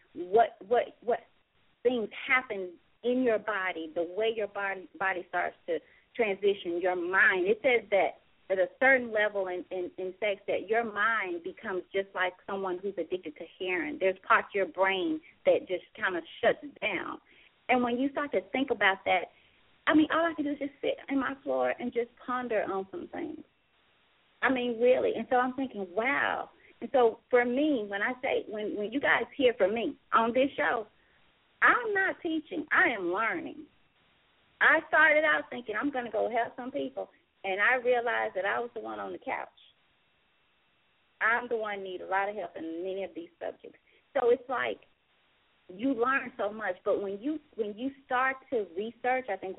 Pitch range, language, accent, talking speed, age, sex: 195-280 Hz, English, American, 195 wpm, 30-49, female